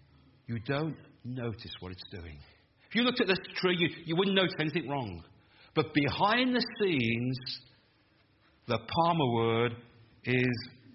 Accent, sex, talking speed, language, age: British, male, 145 wpm, English, 50-69